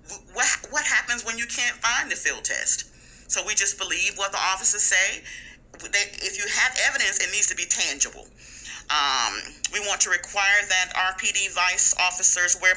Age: 40-59